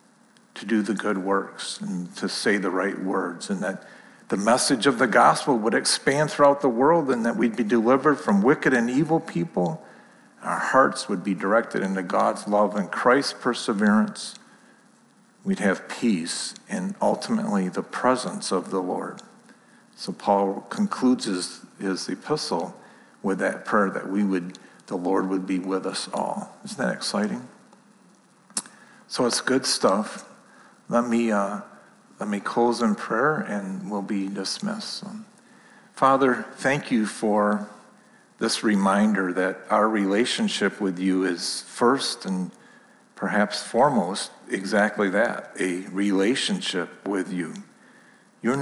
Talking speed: 140 wpm